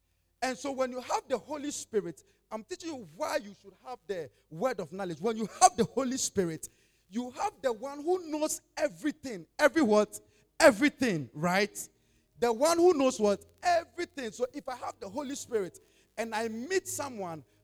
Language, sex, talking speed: English, male, 180 wpm